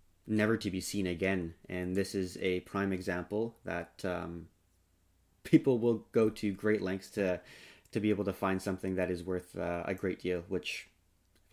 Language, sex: English, male